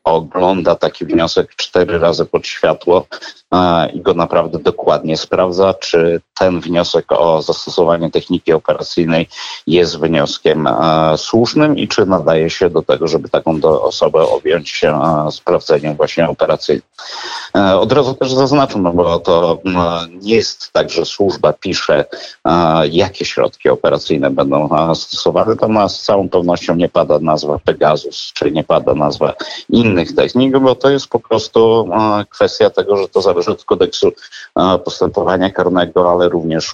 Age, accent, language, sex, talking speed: 50-69, native, Polish, male, 150 wpm